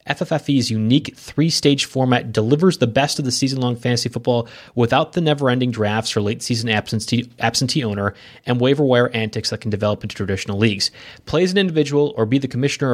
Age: 30-49